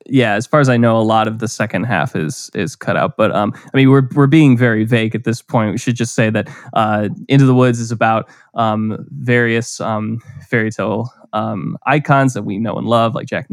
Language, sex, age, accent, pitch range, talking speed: English, male, 20-39, American, 115-135 Hz, 240 wpm